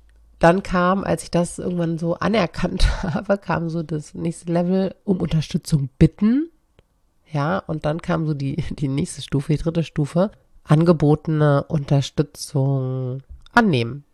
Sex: female